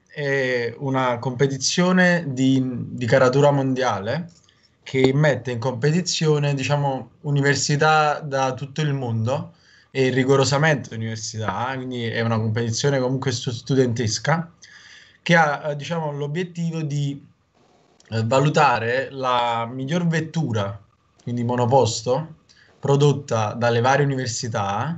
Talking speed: 100 wpm